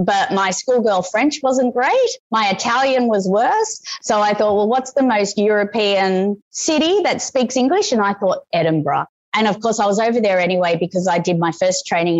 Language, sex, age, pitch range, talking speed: English, female, 30-49, 180-260 Hz, 195 wpm